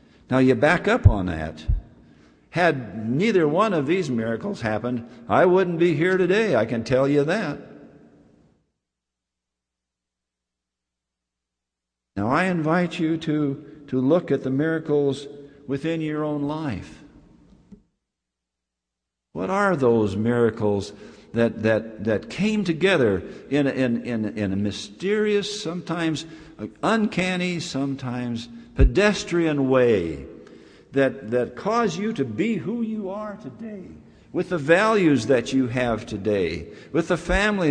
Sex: male